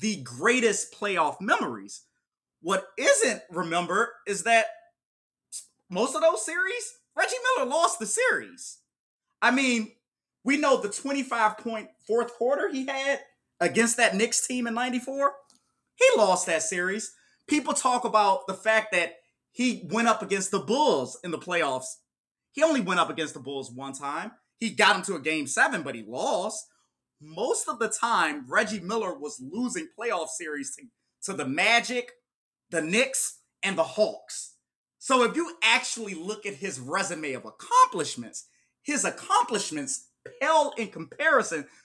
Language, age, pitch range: English, 30-49, 175-265 Hz